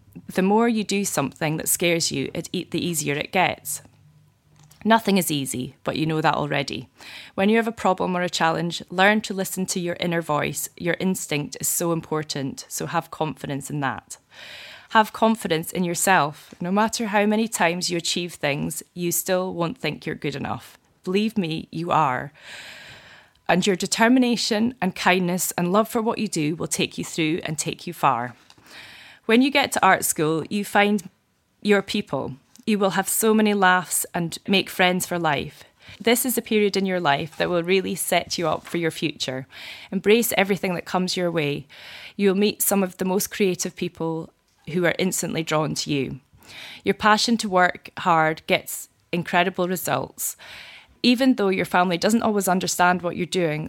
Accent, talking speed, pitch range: British, 180 wpm, 160-200 Hz